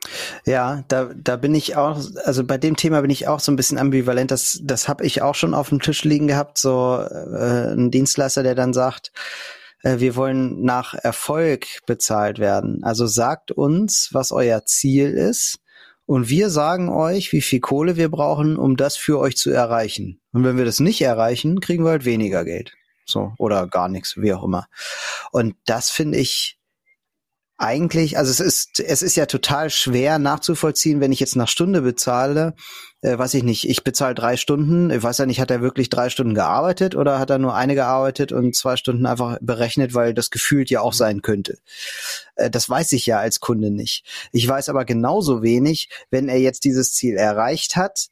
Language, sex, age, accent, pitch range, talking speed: German, male, 30-49, German, 125-150 Hz, 195 wpm